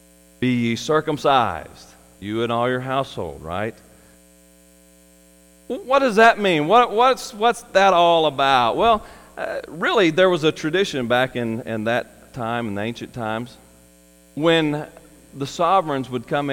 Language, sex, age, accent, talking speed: English, male, 40-59, American, 145 wpm